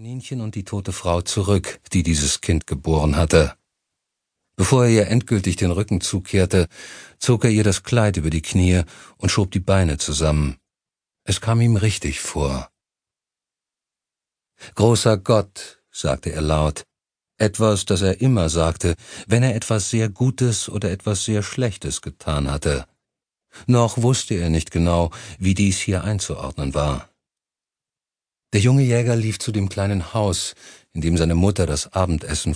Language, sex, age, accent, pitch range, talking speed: German, male, 50-69, German, 85-110 Hz, 145 wpm